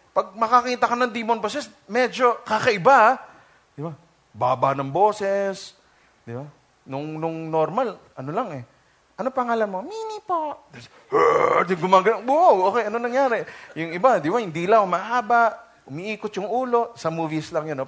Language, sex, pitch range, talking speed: English, male, 180-275 Hz, 150 wpm